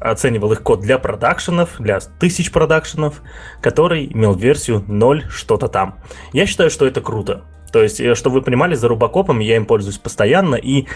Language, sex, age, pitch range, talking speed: Russian, male, 20-39, 105-135 Hz, 170 wpm